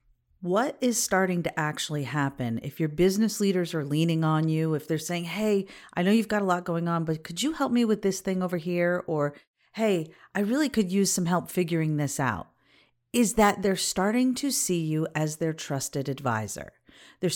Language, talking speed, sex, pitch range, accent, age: English, 205 wpm, female, 150-215 Hz, American, 40-59